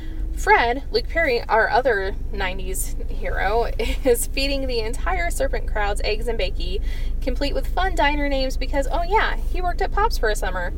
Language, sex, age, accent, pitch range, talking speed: English, female, 10-29, American, 250-395 Hz, 175 wpm